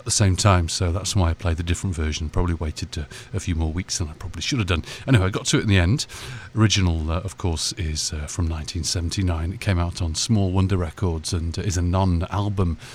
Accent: British